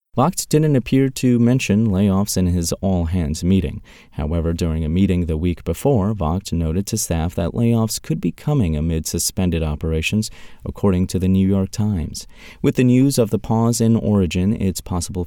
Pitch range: 85-110 Hz